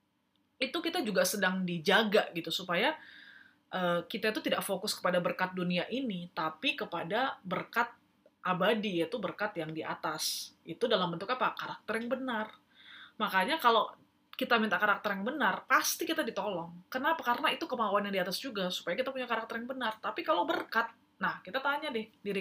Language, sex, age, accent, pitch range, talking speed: Indonesian, female, 20-39, native, 180-235 Hz, 170 wpm